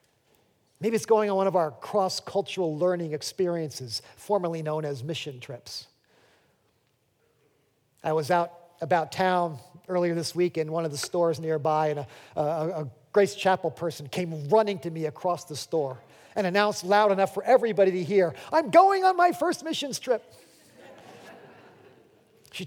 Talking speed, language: 155 wpm, English